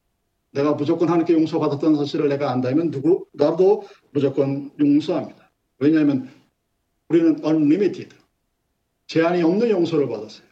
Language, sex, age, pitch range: Korean, male, 50-69, 145-200 Hz